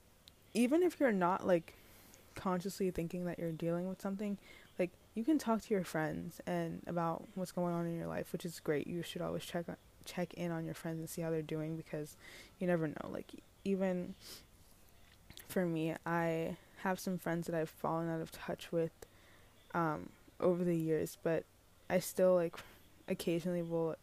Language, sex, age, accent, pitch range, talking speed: English, female, 10-29, American, 155-185 Hz, 180 wpm